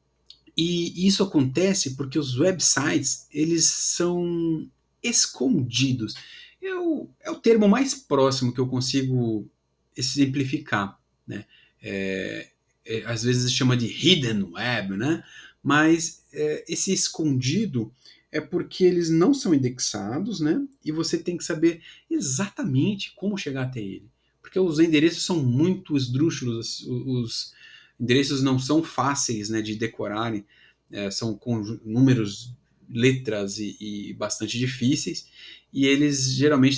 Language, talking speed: Portuguese, 120 wpm